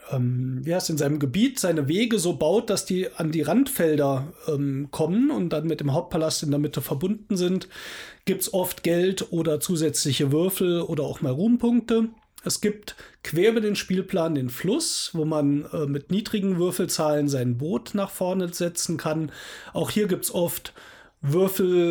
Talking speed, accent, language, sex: 175 wpm, German, German, male